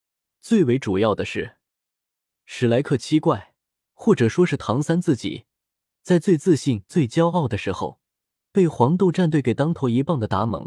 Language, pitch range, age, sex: Chinese, 110-165 Hz, 20-39, male